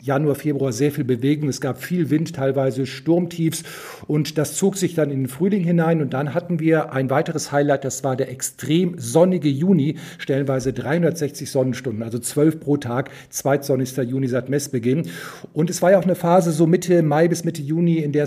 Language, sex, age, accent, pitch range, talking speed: German, male, 50-69, German, 130-155 Hz, 195 wpm